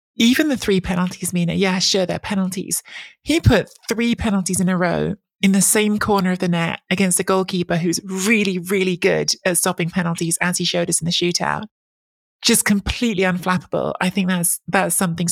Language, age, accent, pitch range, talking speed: English, 20-39, British, 180-205 Hz, 190 wpm